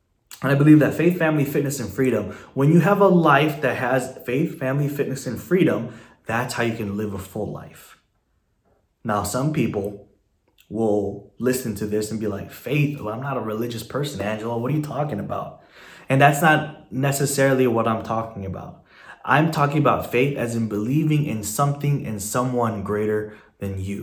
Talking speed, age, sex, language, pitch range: 180 wpm, 20-39, male, English, 105-140 Hz